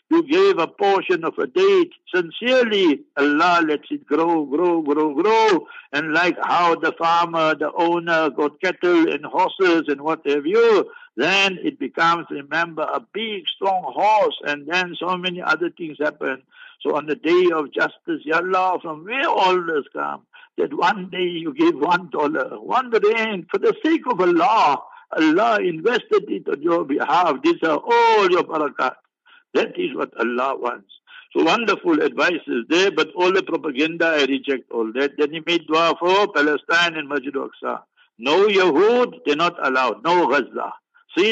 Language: English